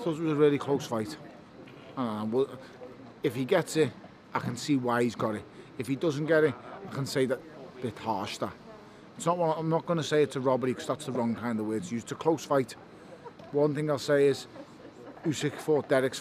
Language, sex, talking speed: English, male, 230 wpm